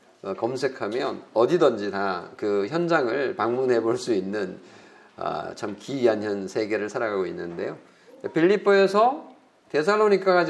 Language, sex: Korean, male